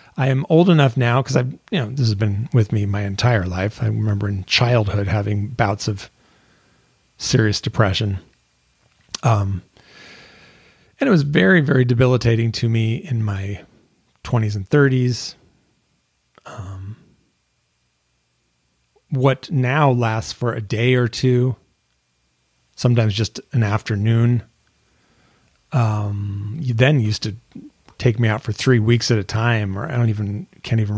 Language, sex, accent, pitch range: English, male, American, 105-130 Hz